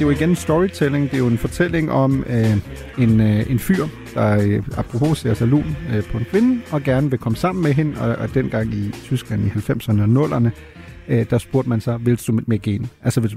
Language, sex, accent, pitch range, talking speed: Danish, male, native, 115-155 Hz, 235 wpm